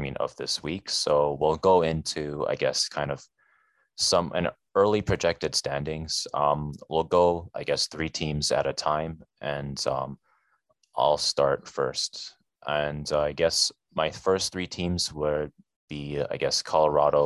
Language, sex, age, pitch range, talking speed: English, male, 20-39, 70-80 Hz, 155 wpm